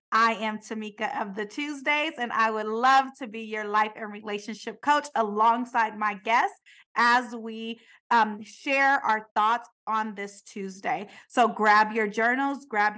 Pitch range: 210-255 Hz